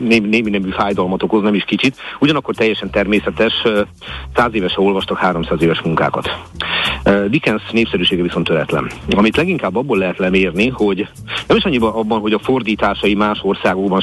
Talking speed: 150 wpm